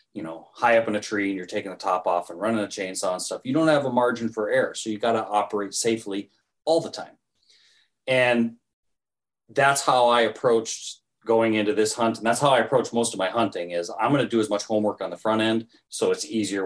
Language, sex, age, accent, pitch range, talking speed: English, male, 30-49, American, 105-125 Hz, 245 wpm